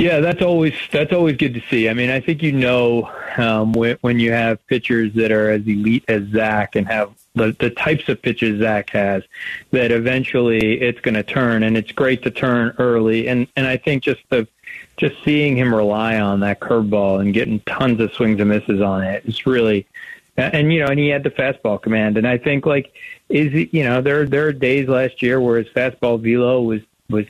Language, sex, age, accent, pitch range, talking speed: English, male, 40-59, American, 115-135 Hz, 220 wpm